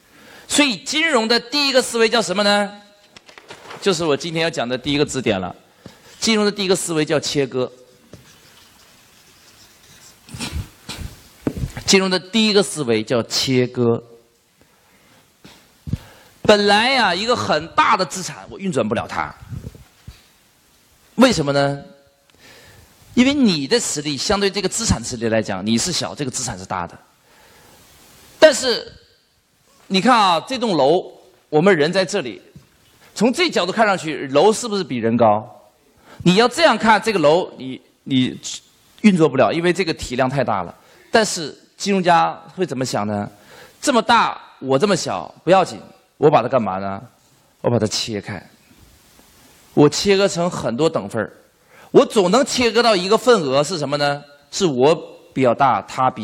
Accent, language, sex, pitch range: native, Chinese, male, 130-210 Hz